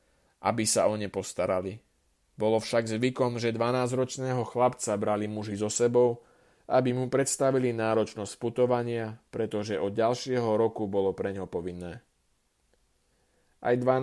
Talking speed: 125 wpm